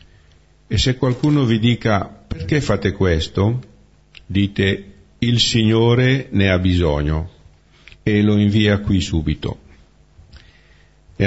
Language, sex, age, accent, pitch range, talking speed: Italian, male, 50-69, native, 80-105 Hz, 105 wpm